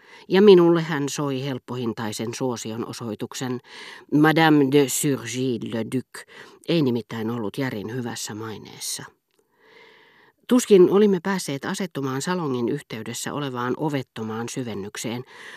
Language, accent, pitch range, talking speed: Finnish, native, 120-170 Hz, 100 wpm